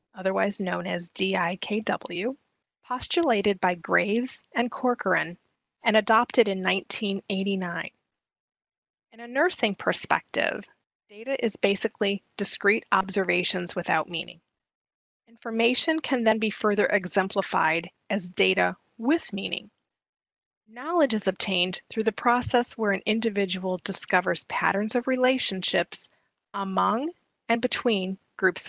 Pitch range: 185-235 Hz